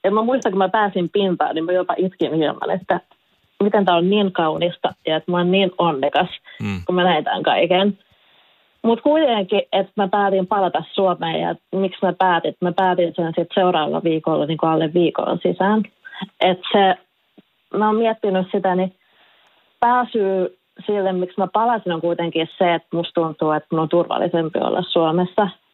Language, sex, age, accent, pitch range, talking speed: Finnish, female, 30-49, native, 170-205 Hz, 170 wpm